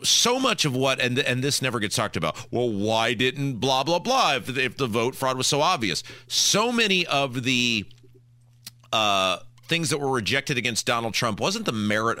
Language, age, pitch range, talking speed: English, 40-59, 120-165 Hz, 195 wpm